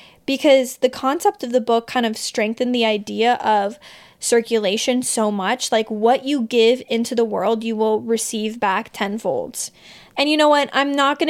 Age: 20-39